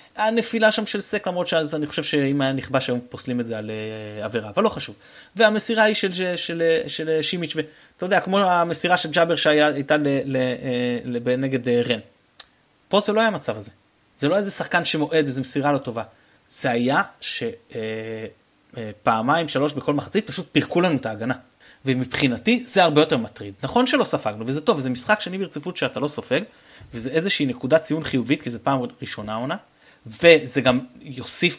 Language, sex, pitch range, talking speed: Hebrew, male, 125-180 Hz, 175 wpm